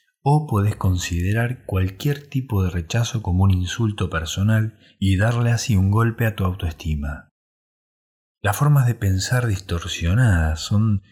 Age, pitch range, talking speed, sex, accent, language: 20-39, 85-110 Hz, 135 wpm, male, Argentinian, Spanish